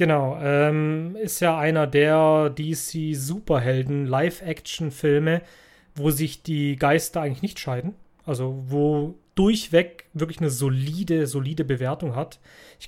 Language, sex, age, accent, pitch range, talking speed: German, male, 30-49, German, 140-165 Hz, 110 wpm